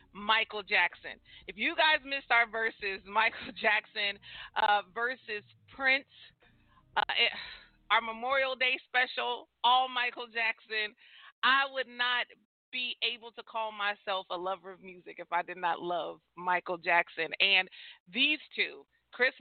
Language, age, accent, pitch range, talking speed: English, 40-59, American, 200-255 Hz, 140 wpm